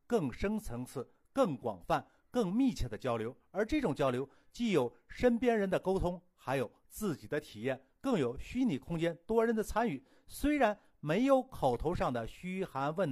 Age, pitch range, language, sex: 50-69, 135-220 Hz, Chinese, male